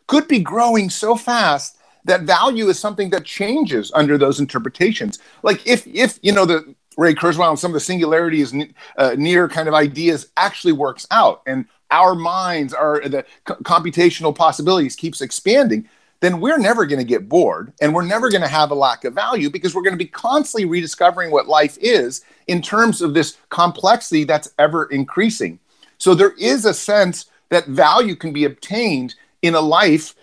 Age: 40-59